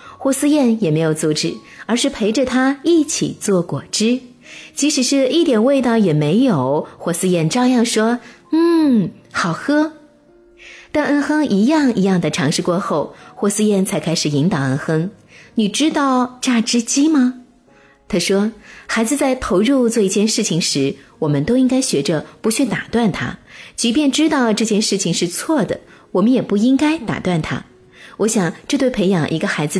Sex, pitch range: female, 170-255 Hz